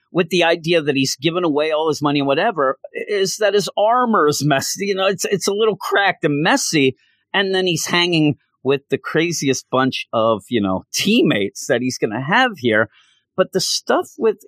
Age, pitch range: 40-59, 120-170 Hz